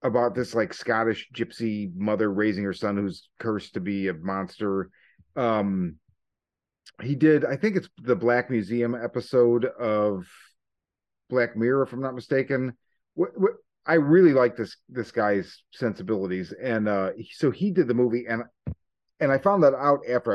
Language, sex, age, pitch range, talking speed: English, male, 40-59, 110-160 Hz, 160 wpm